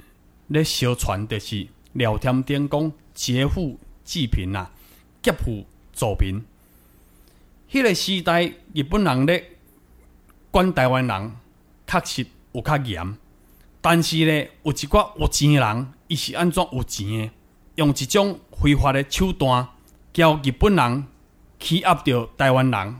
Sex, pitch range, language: male, 100-170 Hz, Chinese